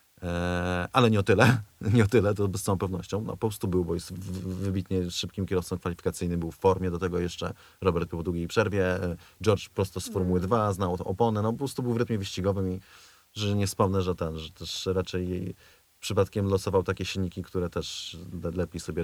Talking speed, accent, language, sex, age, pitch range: 200 wpm, native, Polish, male, 30-49, 90-110 Hz